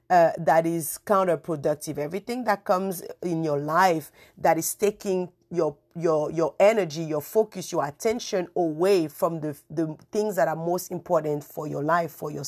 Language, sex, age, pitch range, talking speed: English, female, 50-69, 160-205 Hz, 170 wpm